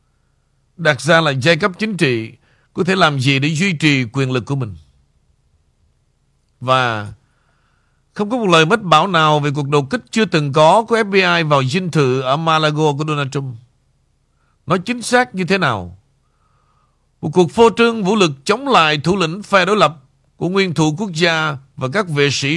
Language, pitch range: Vietnamese, 135-175 Hz